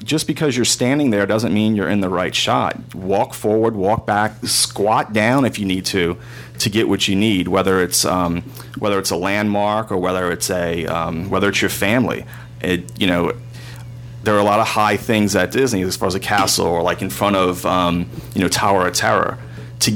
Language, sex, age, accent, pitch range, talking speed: English, male, 30-49, American, 95-120 Hz, 215 wpm